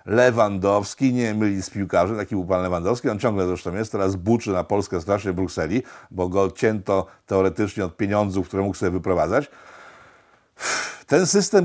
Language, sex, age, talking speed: Polish, male, 50-69, 165 wpm